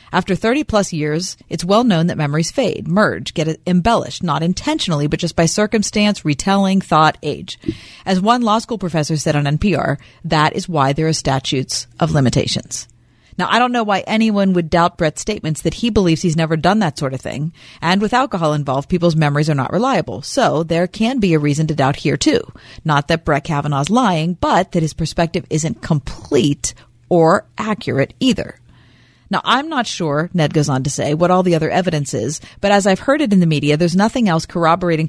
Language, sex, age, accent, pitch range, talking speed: English, female, 40-59, American, 150-195 Hz, 200 wpm